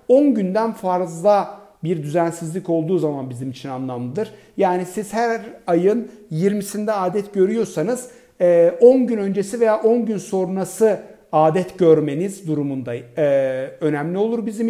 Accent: native